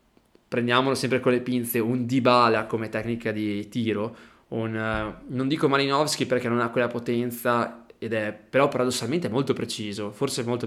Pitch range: 115-135 Hz